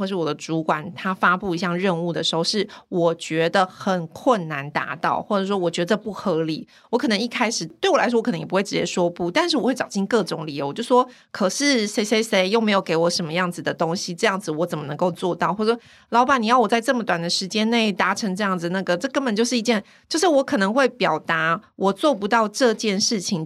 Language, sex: Chinese, female